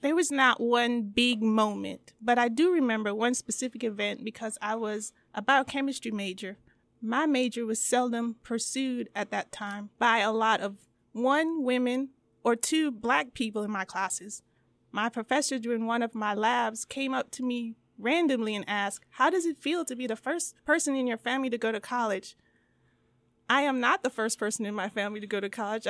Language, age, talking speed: English, 30-49, 190 wpm